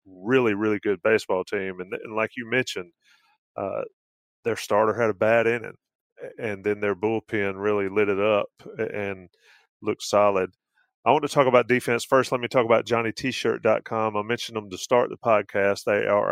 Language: English